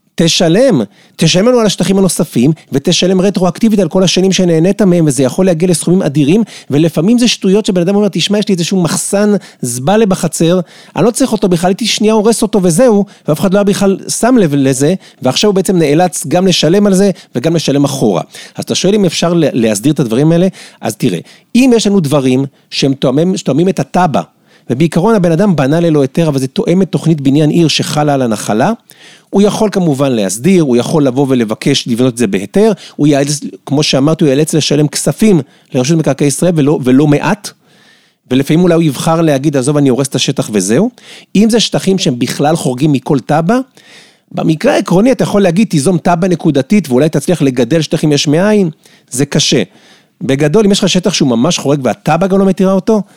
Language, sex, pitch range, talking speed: Hebrew, male, 150-200 Hz, 170 wpm